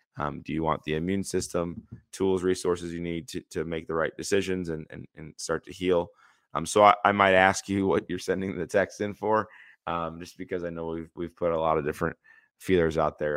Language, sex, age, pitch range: English, male, 20-39, 80-95 Hz